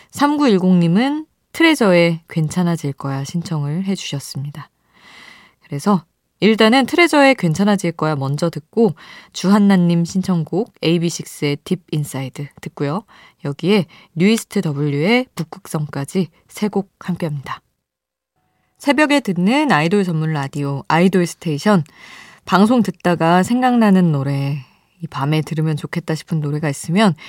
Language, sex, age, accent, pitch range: Korean, female, 20-39, native, 150-205 Hz